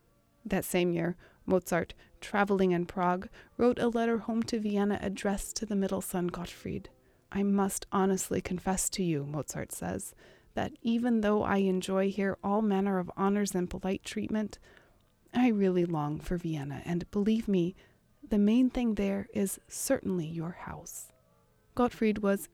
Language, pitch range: English, 175-220 Hz